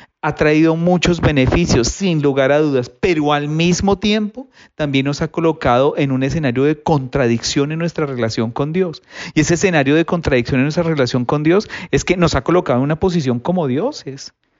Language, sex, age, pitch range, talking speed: English, male, 40-59, 120-155 Hz, 190 wpm